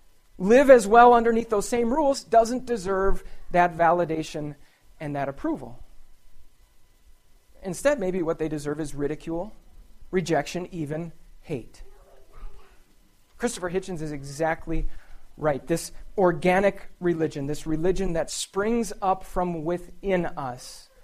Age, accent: 40-59, American